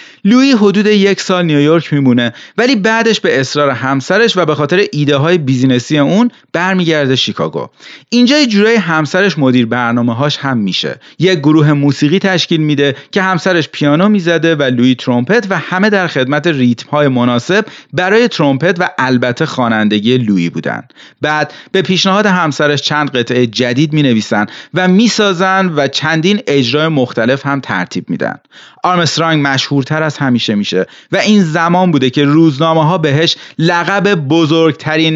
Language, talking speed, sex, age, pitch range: Persian, 145 wpm, male, 30-49, 135-190 Hz